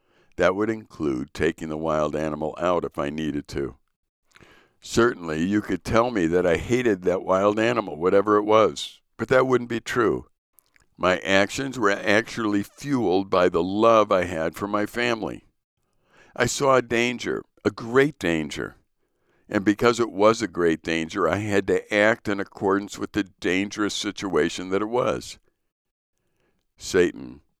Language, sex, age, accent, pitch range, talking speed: English, male, 60-79, American, 90-110 Hz, 155 wpm